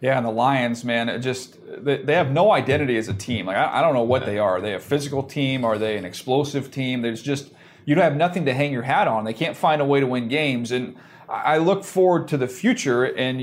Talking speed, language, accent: 260 wpm, English, American